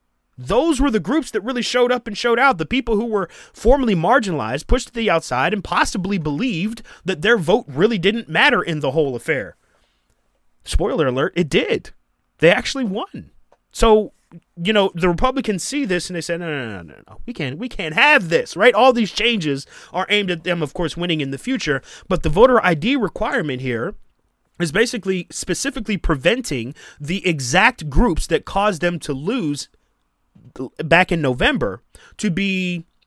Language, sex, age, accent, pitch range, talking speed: English, male, 30-49, American, 155-225 Hz, 180 wpm